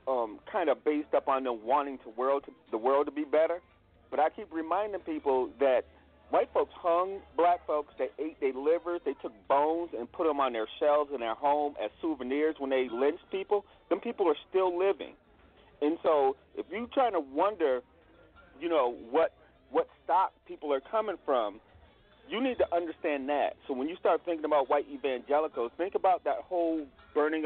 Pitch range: 140-185 Hz